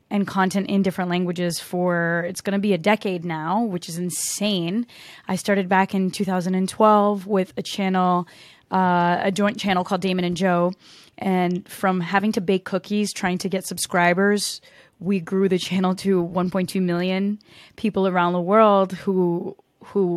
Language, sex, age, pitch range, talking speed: English, female, 20-39, 180-205 Hz, 160 wpm